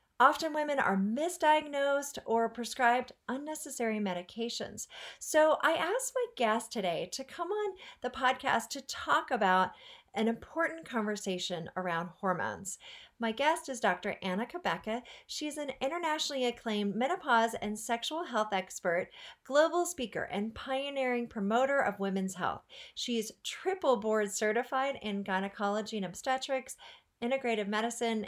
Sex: female